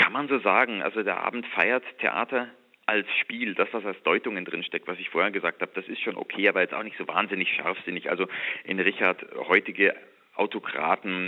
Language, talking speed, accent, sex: German, 195 wpm, German, male